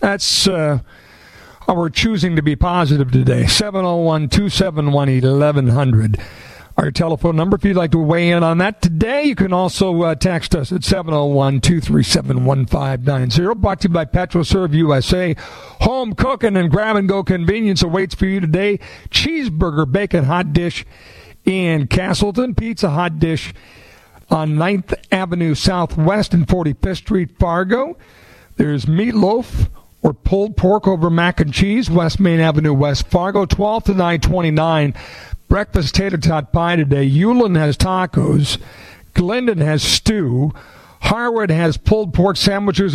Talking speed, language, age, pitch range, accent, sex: 135 wpm, English, 50-69, 145-190 Hz, American, male